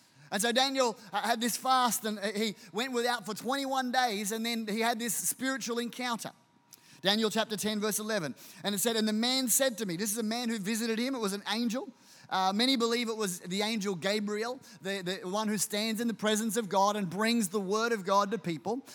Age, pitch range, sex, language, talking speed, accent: 30-49, 190-235 Hz, male, English, 225 wpm, Australian